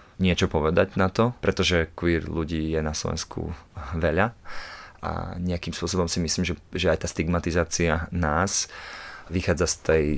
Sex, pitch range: male, 80-90 Hz